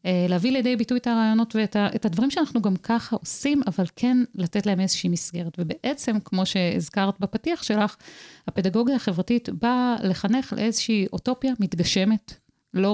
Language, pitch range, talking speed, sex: Hebrew, 175-225 Hz, 140 wpm, female